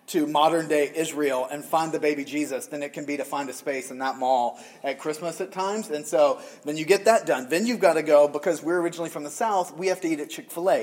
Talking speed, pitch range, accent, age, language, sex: 260 wpm, 150-180 Hz, American, 30-49, English, male